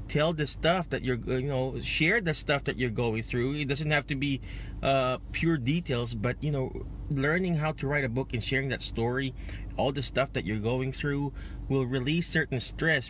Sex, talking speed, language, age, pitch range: male, 210 wpm, English, 20-39, 125-165 Hz